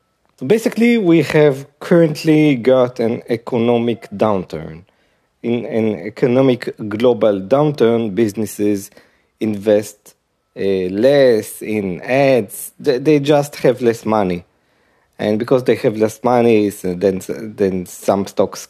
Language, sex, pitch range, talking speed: English, male, 110-150 Hz, 110 wpm